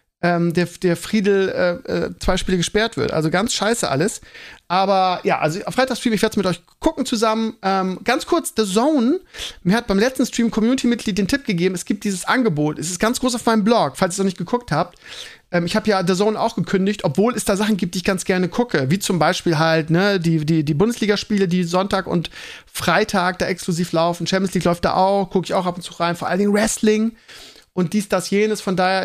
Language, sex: German, male